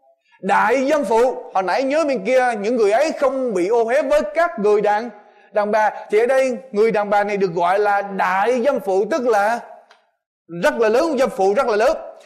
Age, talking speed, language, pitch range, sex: 20-39, 215 wpm, Vietnamese, 210-275 Hz, male